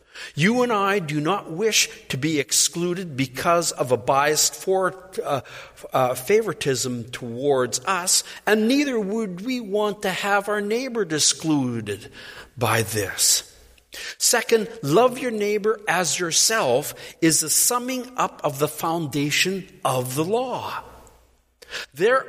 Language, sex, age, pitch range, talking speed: English, male, 50-69, 140-210 Hz, 130 wpm